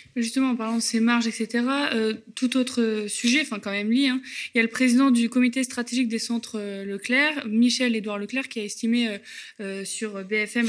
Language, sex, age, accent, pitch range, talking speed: French, female, 20-39, French, 220-260 Hz, 210 wpm